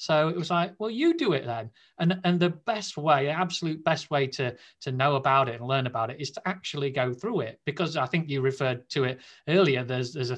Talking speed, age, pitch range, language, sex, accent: 255 wpm, 30-49, 125-160 Hz, English, male, British